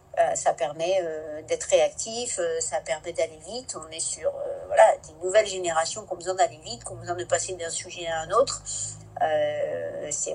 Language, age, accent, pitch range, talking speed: French, 50-69, French, 170-270 Hz, 210 wpm